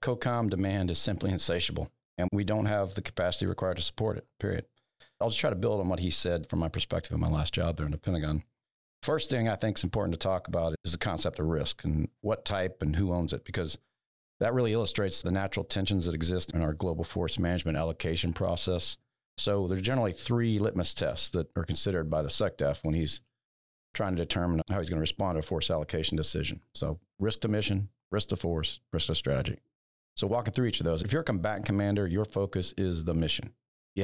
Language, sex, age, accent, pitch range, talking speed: English, male, 50-69, American, 85-105 Hz, 225 wpm